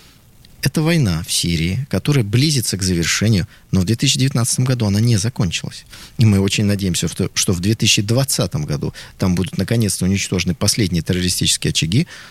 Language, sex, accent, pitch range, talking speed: Russian, male, native, 95-130 Hz, 145 wpm